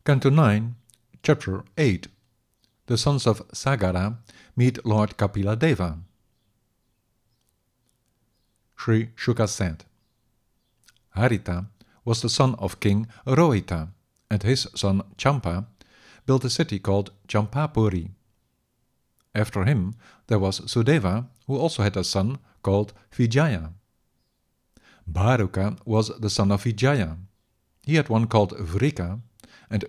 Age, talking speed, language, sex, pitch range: 50-69, 110 wpm, English, male, 100-120 Hz